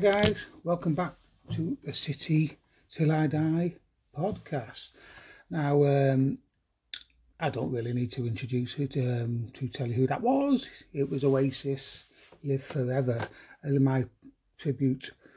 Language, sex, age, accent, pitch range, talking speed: English, male, 30-49, British, 130-155 Hz, 135 wpm